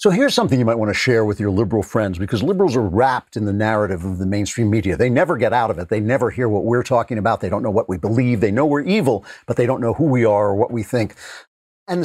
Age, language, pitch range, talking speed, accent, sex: 50-69, English, 110-150 Hz, 290 wpm, American, male